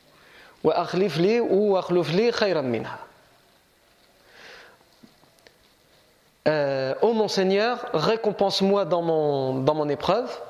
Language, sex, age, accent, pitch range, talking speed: French, male, 40-59, French, 175-225 Hz, 65 wpm